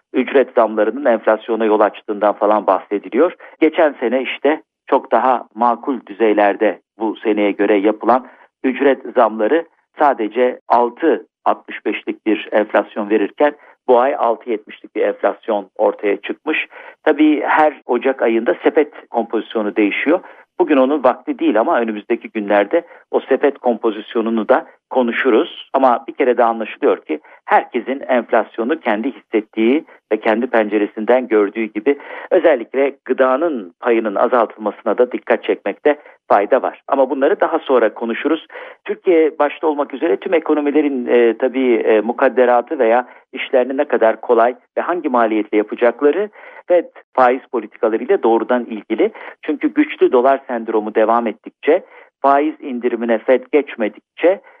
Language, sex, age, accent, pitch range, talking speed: Turkish, male, 50-69, native, 110-150 Hz, 125 wpm